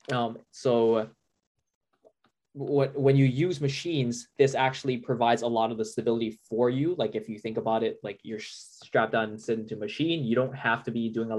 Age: 10-29